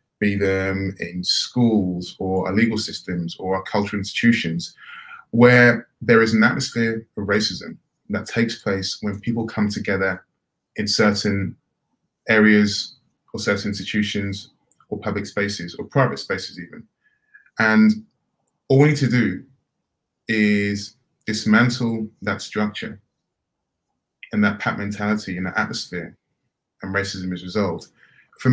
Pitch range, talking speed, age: 100-120 Hz, 130 wpm, 20-39